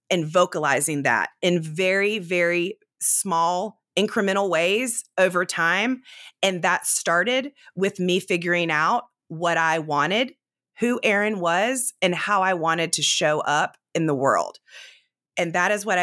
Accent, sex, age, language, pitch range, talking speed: American, female, 30-49, English, 155-200 Hz, 140 wpm